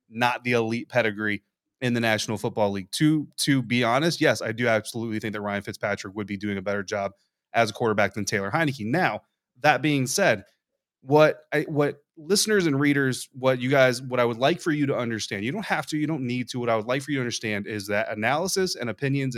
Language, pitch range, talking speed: English, 115-150 Hz, 230 wpm